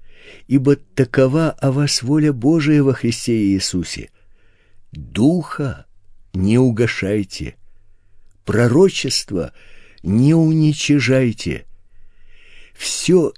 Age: 60-79